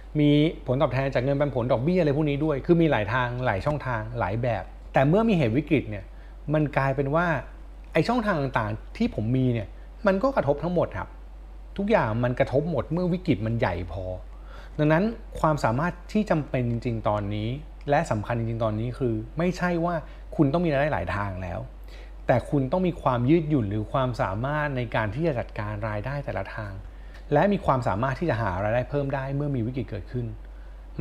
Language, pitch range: Thai, 110-155 Hz